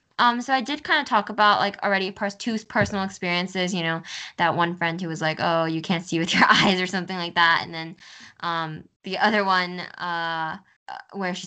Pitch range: 170-200 Hz